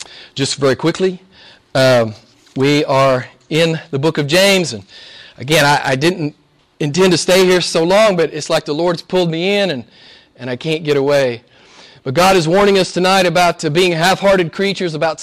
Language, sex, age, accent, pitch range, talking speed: English, male, 40-59, American, 150-190 Hz, 185 wpm